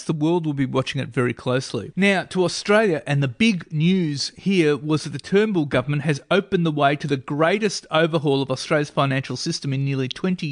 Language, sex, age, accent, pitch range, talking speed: English, male, 30-49, Australian, 140-170 Hz, 205 wpm